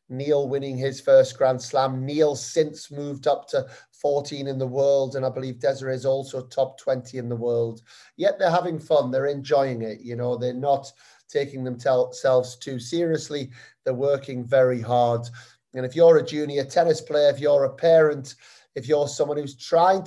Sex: male